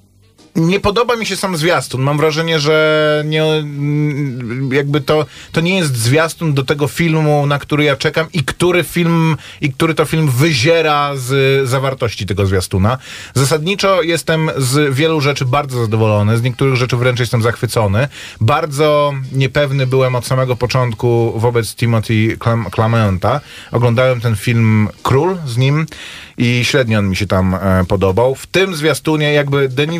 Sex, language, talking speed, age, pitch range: male, Polish, 150 wpm, 30-49, 110-145 Hz